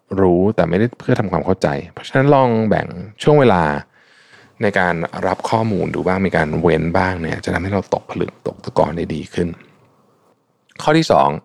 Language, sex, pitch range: Thai, male, 80-105 Hz